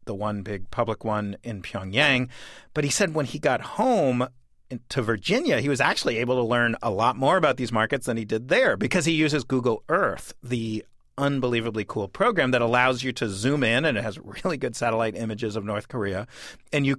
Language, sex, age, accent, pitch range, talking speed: English, male, 40-59, American, 110-135 Hz, 210 wpm